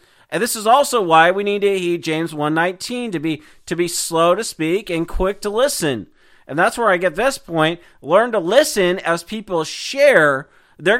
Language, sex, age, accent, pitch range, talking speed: English, male, 40-59, American, 160-220 Hz, 195 wpm